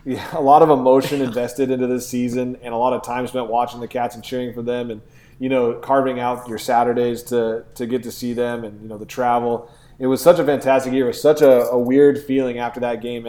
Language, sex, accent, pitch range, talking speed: English, male, American, 115-130 Hz, 255 wpm